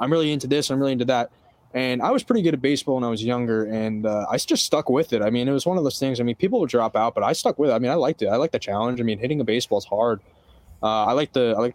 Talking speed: 340 wpm